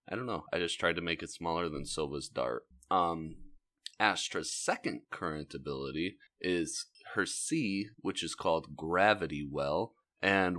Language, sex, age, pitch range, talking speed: English, male, 30-49, 85-140 Hz, 155 wpm